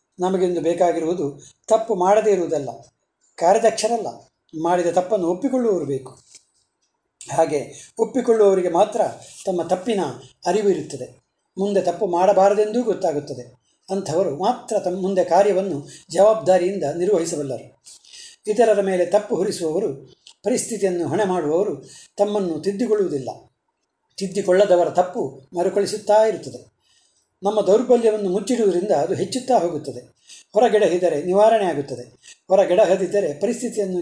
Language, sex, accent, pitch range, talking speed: Kannada, male, native, 175-215 Hz, 90 wpm